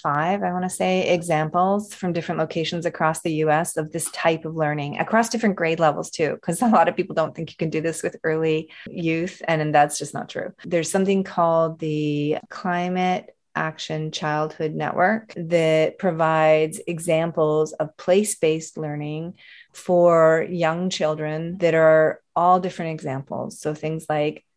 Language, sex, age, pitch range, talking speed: English, female, 30-49, 155-185 Hz, 165 wpm